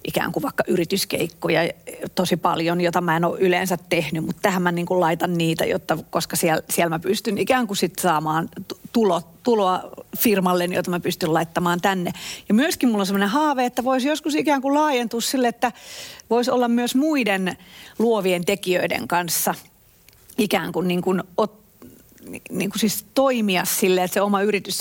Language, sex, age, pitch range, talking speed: Finnish, female, 40-59, 180-215 Hz, 175 wpm